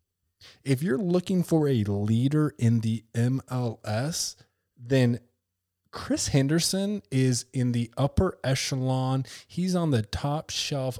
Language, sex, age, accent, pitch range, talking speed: English, male, 20-39, American, 110-140 Hz, 120 wpm